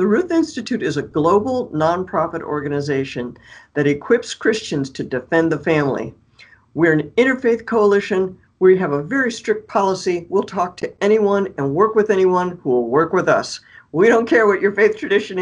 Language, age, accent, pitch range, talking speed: English, 60-79, American, 155-225 Hz, 175 wpm